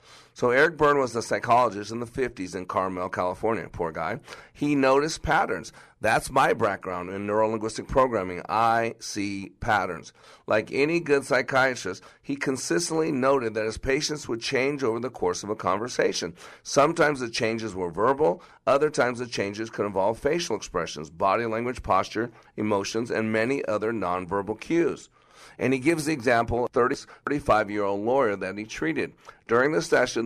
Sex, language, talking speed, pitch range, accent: male, English, 160 wpm, 105-130 Hz, American